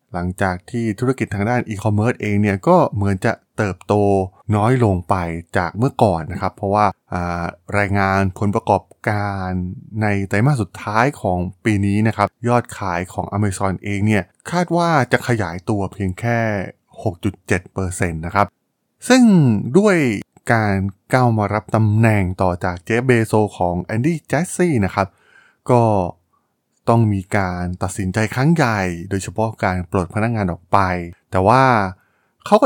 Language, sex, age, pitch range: Thai, male, 20-39, 95-125 Hz